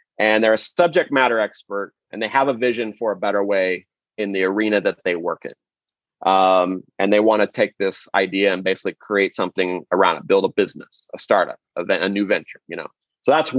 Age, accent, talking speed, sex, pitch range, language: 30-49, American, 215 wpm, male, 100-125 Hz, English